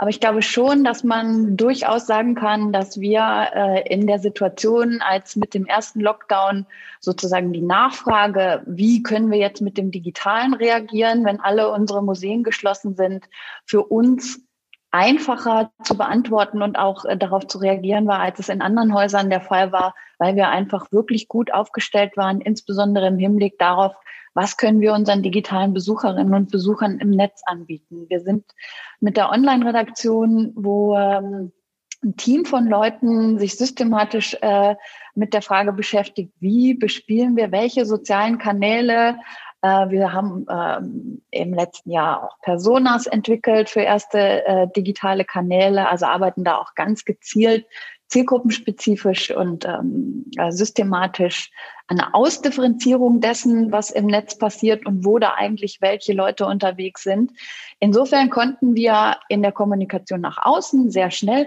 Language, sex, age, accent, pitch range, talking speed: German, female, 30-49, German, 195-230 Hz, 145 wpm